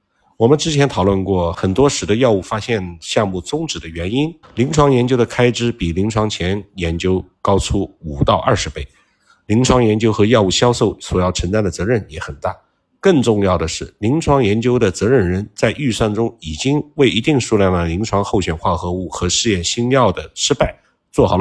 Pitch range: 95-130 Hz